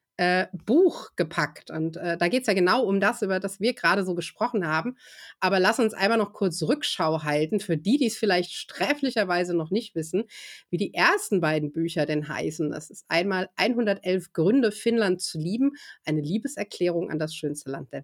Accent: German